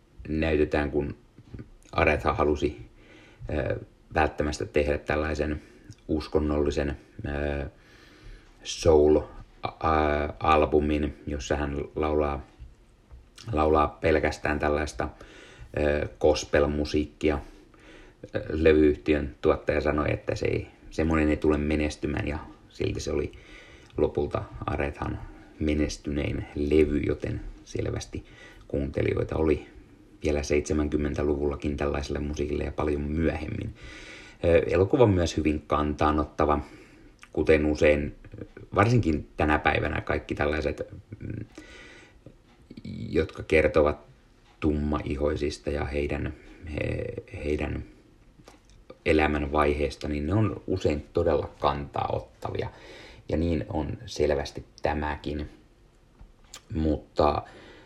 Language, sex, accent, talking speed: Finnish, male, native, 80 wpm